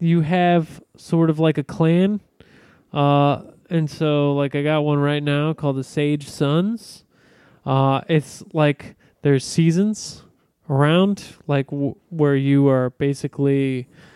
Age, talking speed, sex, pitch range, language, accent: 20-39, 130 wpm, male, 130-160 Hz, English, American